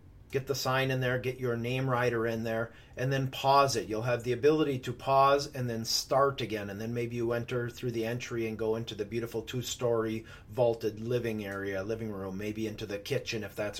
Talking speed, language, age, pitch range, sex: 220 wpm, English, 40-59, 115-140 Hz, male